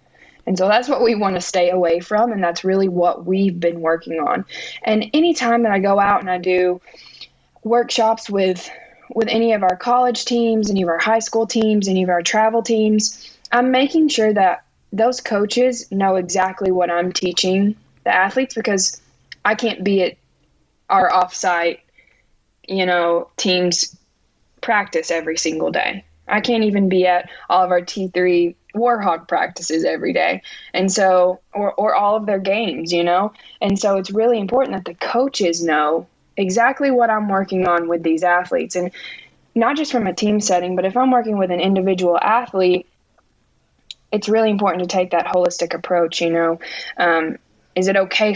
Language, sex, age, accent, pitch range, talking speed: English, female, 20-39, American, 175-220 Hz, 175 wpm